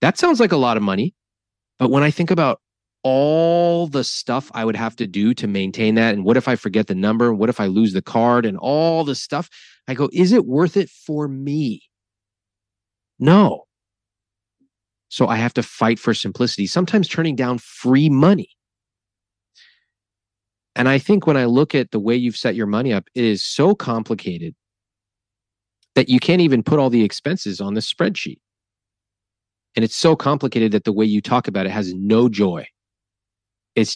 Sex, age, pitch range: male, 30-49, 100-140 Hz